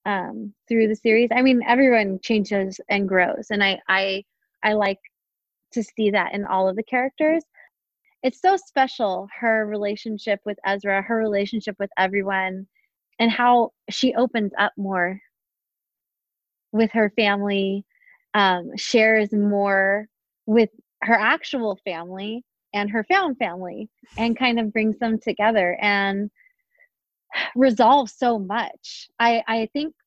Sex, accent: female, American